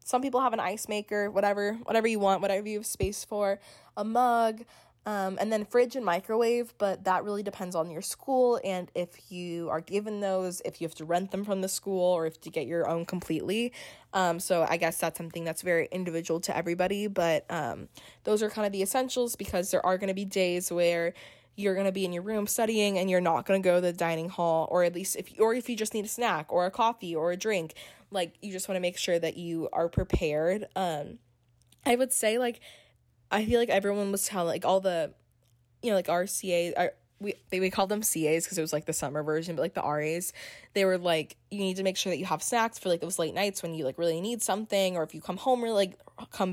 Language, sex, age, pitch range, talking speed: English, female, 20-39, 170-205 Hz, 250 wpm